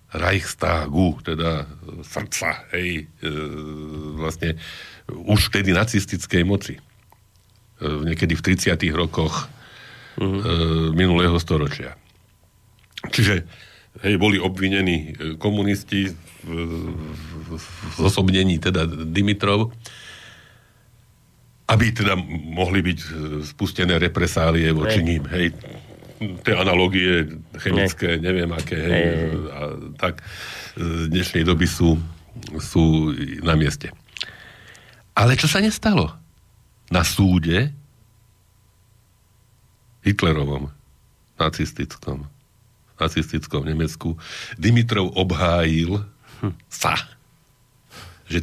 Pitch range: 80-100 Hz